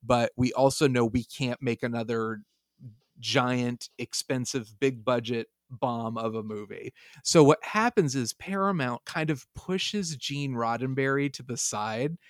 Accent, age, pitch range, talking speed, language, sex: American, 30-49, 120-150 Hz, 140 wpm, English, male